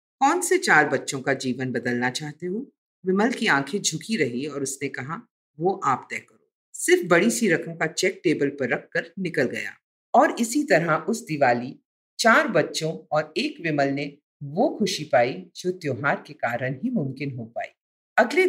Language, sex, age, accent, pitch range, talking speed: Hindi, female, 50-69, native, 140-225 Hz, 180 wpm